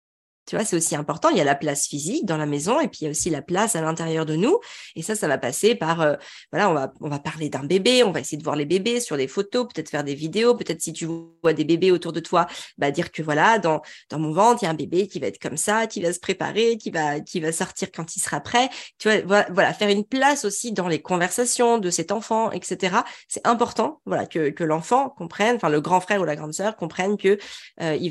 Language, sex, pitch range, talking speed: French, female, 160-220 Hz, 270 wpm